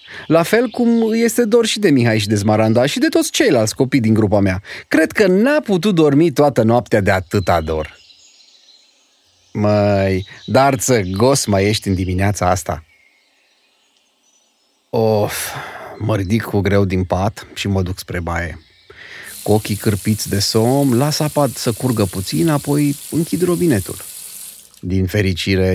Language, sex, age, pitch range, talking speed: Romanian, male, 30-49, 95-160 Hz, 150 wpm